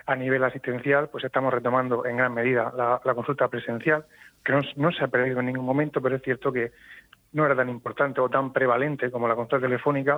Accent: Spanish